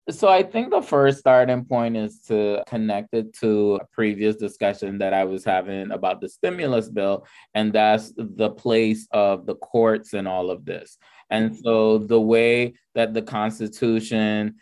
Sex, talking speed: male, 170 wpm